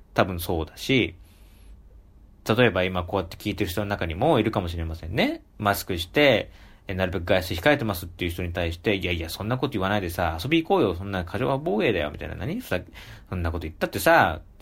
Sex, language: male, Japanese